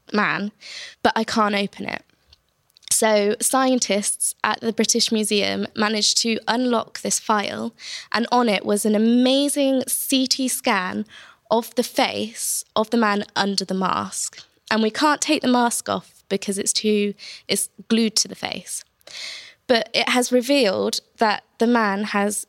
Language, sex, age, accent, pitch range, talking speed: English, female, 20-39, British, 200-240 Hz, 150 wpm